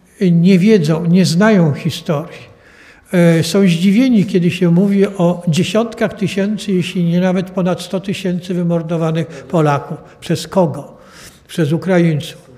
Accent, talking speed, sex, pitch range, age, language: native, 120 wpm, male, 165-205 Hz, 60-79, Polish